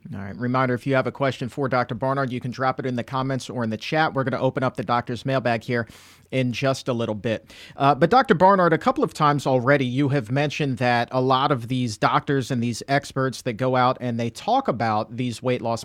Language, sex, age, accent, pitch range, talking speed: English, male, 40-59, American, 120-145 Hz, 255 wpm